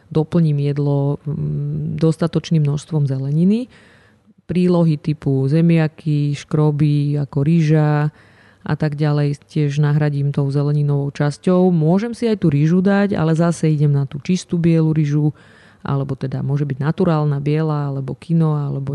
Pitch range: 140-160 Hz